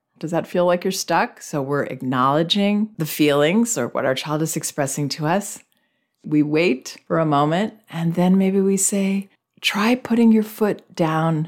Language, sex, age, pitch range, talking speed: English, female, 40-59, 135-180 Hz, 180 wpm